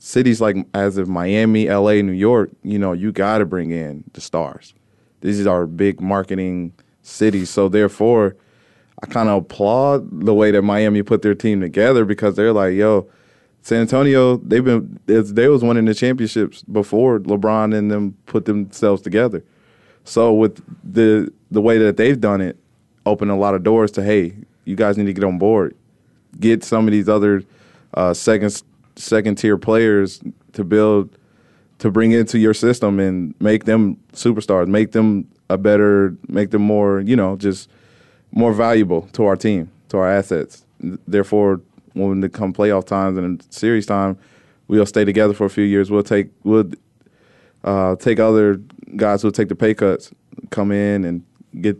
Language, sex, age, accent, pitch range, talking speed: English, male, 20-39, American, 100-110 Hz, 175 wpm